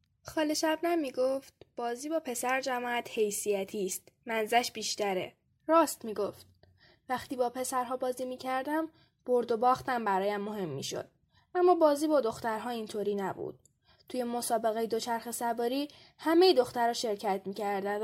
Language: Persian